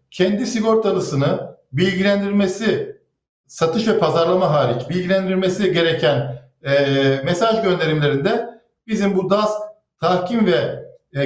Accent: native